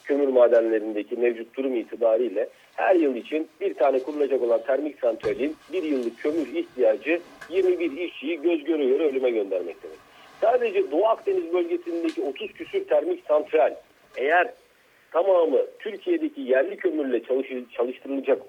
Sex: male